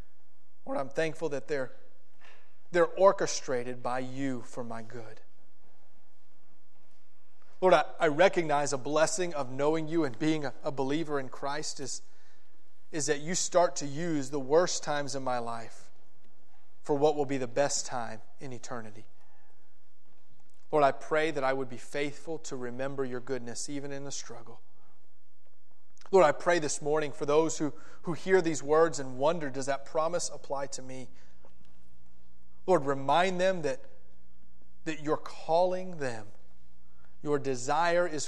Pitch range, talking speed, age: 105-150 Hz, 150 wpm, 30-49